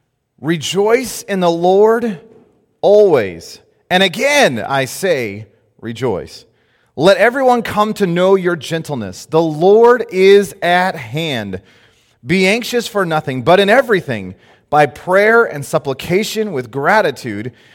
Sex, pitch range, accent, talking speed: male, 125-185 Hz, American, 120 wpm